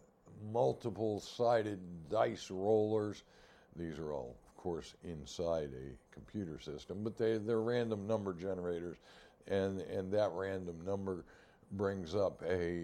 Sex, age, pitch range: male, 60-79, 85-110 Hz